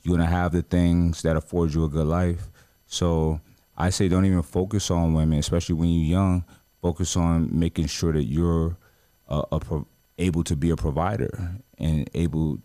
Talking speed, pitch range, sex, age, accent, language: 175 wpm, 80-100 Hz, male, 30-49, American, English